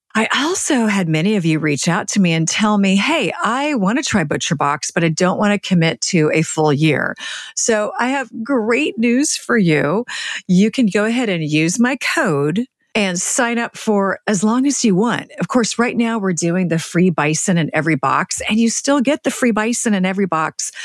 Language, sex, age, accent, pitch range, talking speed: English, female, 40-59, American, 170-230 Hz, 215 wpm